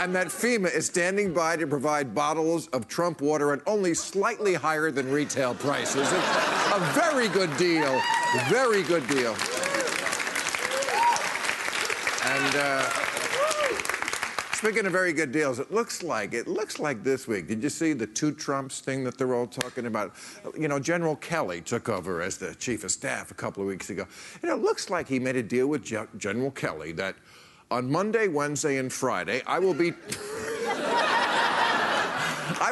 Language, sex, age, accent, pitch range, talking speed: English, male, 50-69, American, 130-190 Hz, 170 wpm